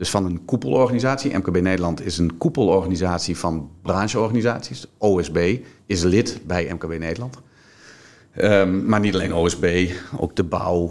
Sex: male